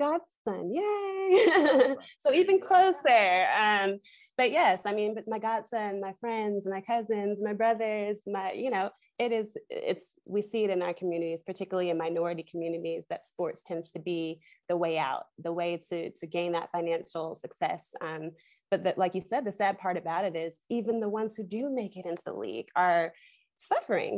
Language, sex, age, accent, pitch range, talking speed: English, female, 20-39, American, 170-225 Hz, 185 wpm